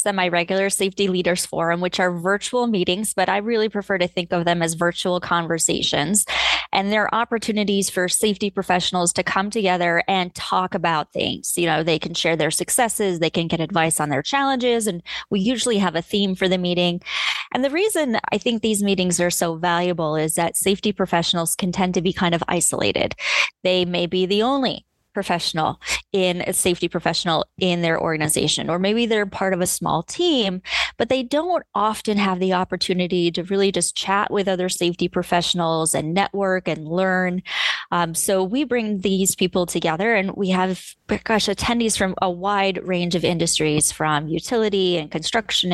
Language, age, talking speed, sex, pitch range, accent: English, 20-39, 180 wpm, female, 175-205 Hz, American